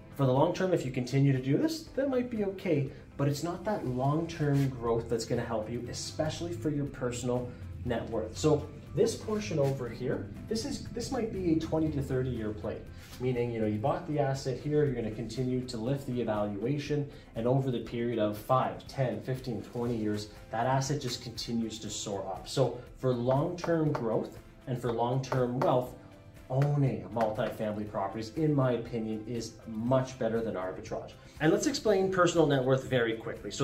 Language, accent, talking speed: English, American, 195 wpm